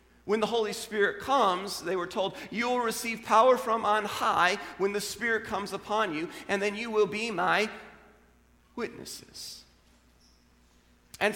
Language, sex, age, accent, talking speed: English, male, 40-59, American, 155 wpm